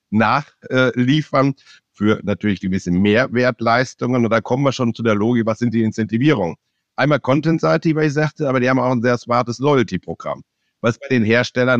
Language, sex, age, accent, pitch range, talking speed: German, male, 60-79, German, 110-130 Hz, 180 wpm